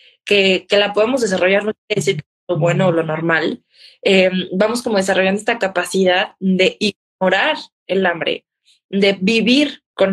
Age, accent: 20-39, Mexican